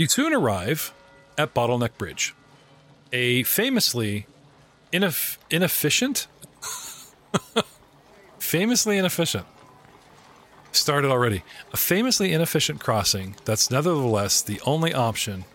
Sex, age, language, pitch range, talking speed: male, 40-59, English, 105-140 Hz, 85 wpm